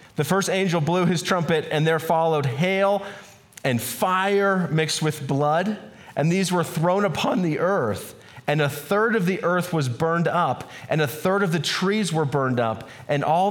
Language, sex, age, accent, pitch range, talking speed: English, male, 30-49, American, 150-180 Hz, 185 wpm